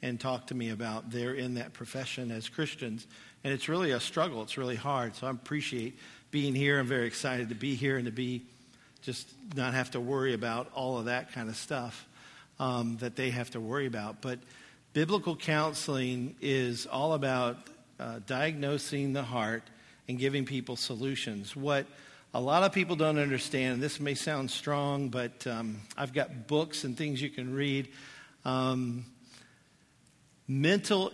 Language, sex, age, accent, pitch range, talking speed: English, male, 50-69, American, 120-140 Hz, 175 wpm